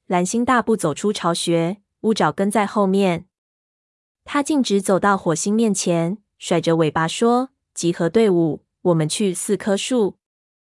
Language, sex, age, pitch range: Chinese, female, 20-39, 175-220 Hz